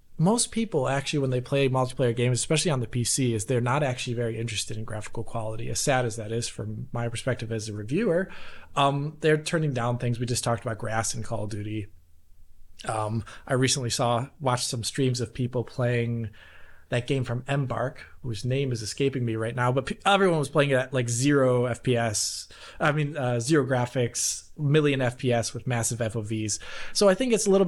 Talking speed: 200 wpm